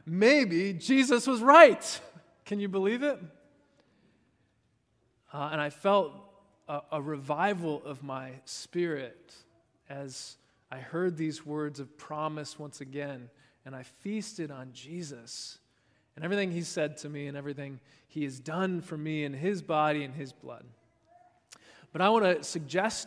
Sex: male